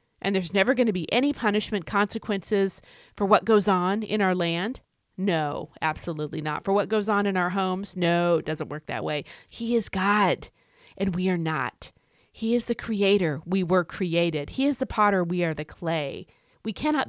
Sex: female